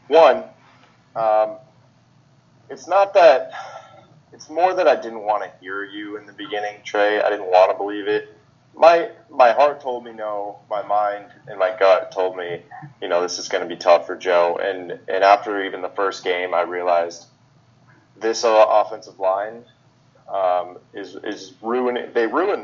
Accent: American